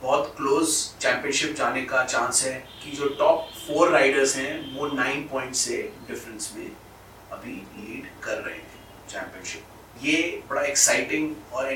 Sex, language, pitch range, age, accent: male, Hindi, 135-155 Hz, 30-49, native